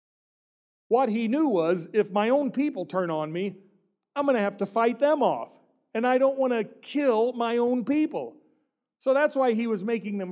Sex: male